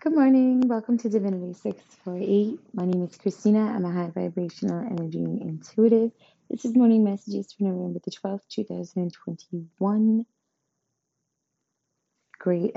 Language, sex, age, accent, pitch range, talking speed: English, female, 20-39, American, 170-200 Hz, 120 wpm